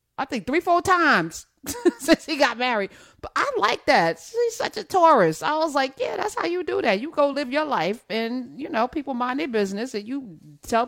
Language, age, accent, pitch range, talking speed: English, 40-59, American, 180-255 Hz, 225 wpm